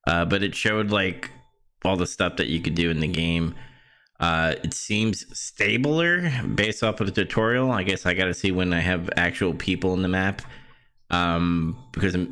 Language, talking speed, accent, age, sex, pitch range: English, 195 wpm, American, 20-39, male, 85-105 Hz